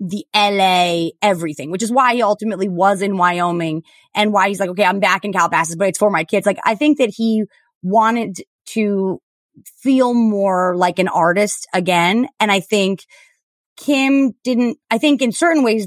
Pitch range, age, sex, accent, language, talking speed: 190-255 Hz, 20-39, female, American, English, 180 wpm